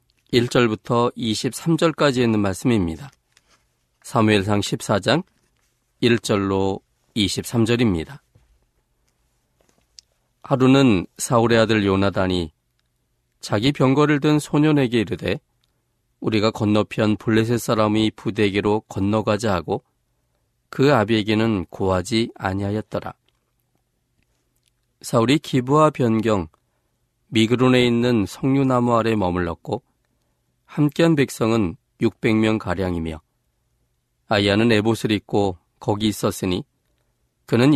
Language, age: Korean, 40-59